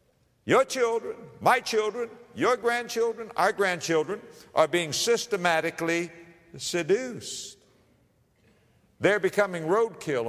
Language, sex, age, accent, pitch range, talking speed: English, male, 60-79, American, 130-205 Hz, 85 wpm